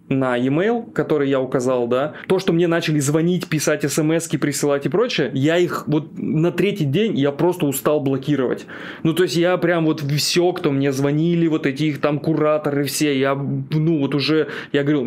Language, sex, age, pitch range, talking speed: Russian, male, 20-39, 130-160 Hz, 185 wpm